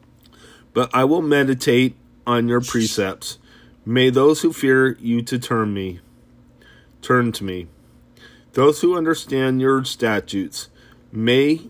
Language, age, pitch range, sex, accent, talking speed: English, 30-49, 110-135 Hz, male, American, 125 wpm